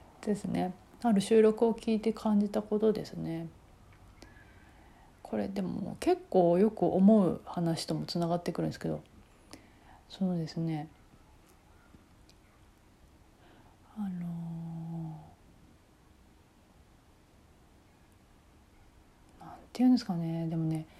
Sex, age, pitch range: female, 40-59, 150-225 Hz